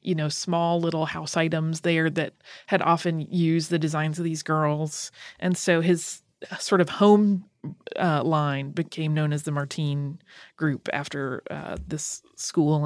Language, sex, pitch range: English, female, 150-185 Hz